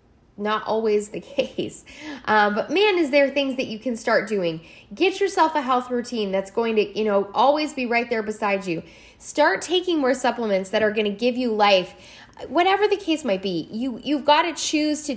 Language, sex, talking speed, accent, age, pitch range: English, female, 210 wpm, American, 10-29, 200-260 Hz